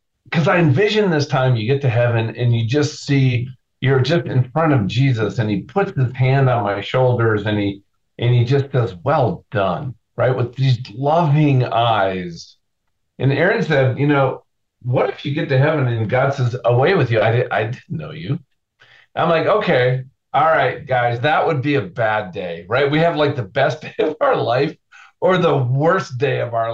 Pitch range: 110-140 Hz